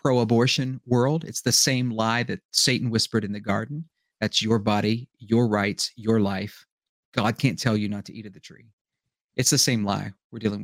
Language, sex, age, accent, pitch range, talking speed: English, male, 40-59, American, 105-130 Hz, 195 wpm